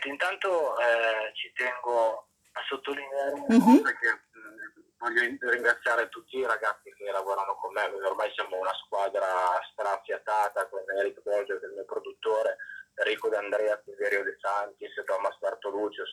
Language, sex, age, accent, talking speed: Italian, male, 20-39, native, 140 wpm